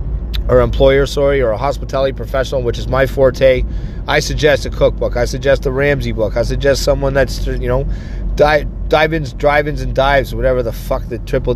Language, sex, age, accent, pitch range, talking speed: English, male, 30-49, American, 105-135 Hz, 185 wpm